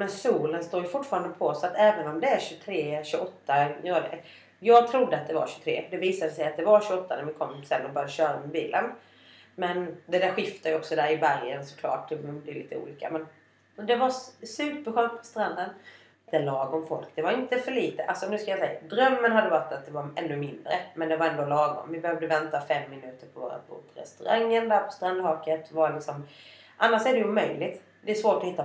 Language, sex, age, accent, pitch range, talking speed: Swedish, female, 30-49, native, 150-210 Hz, 215 wpm